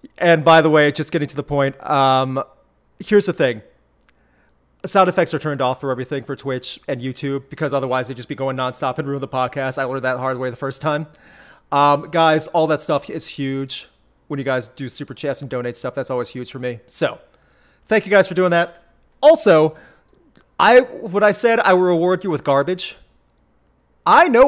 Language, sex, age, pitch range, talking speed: English, male, 30-49, 135-180 Hz, 205 wpm